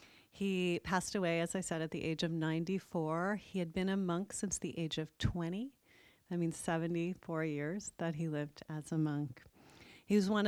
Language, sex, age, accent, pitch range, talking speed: English, female, 40-59, American, 155-190 Hz, 195 wpm